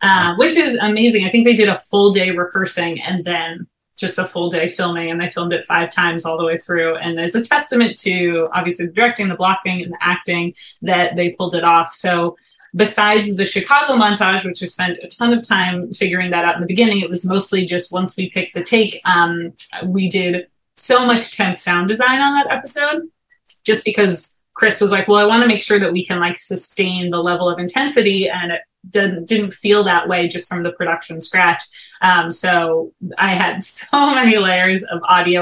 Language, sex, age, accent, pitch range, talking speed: English, female, 30-49, American, 175-205 Hz, 210 wpm